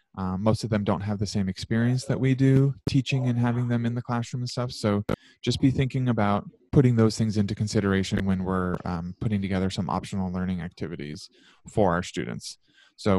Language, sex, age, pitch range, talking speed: English, male, 20-39, 95-115 Hz, 200 wpm